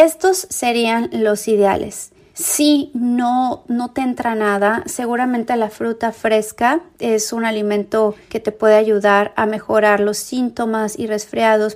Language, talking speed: Spanish, 135 wpm